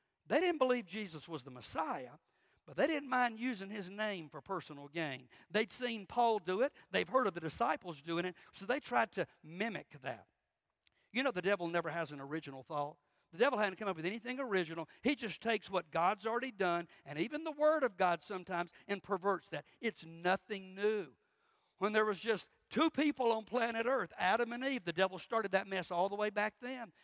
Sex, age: male, 60-79